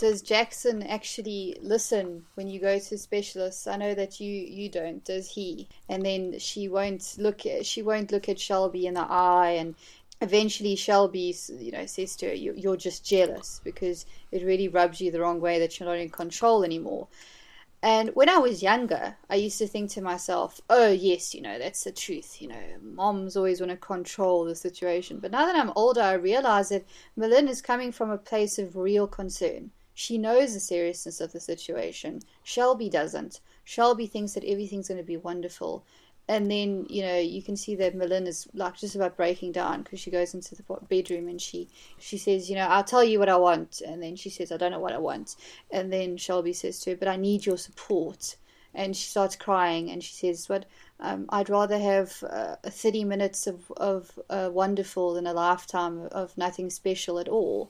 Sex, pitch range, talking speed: female, 180-210 Hz, 205 wpm